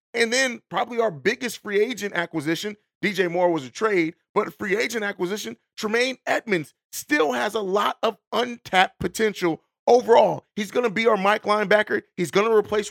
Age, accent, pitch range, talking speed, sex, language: 30-49, American, 175-220 Hz, 180 wpm, male, English